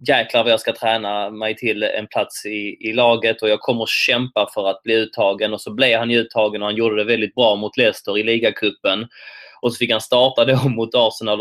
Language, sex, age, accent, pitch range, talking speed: English, male, 20-39, Swedish, 110-150 Hz, 230 wpm